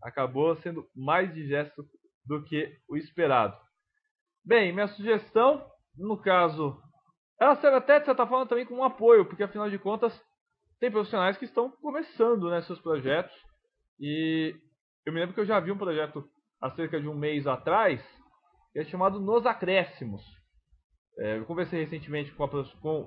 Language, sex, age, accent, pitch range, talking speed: English, male, 20-39, Brazilian, 145-215 Hz, 165 wpm